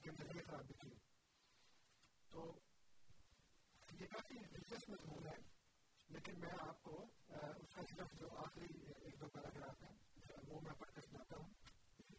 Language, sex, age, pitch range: Urdu, female, 40-59, 140-170 Hz